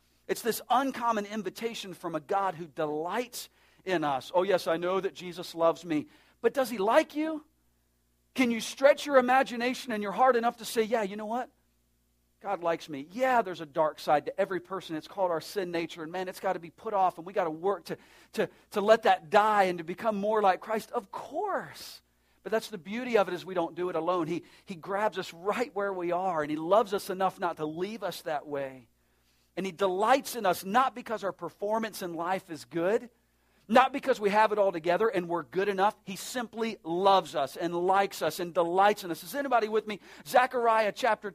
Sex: male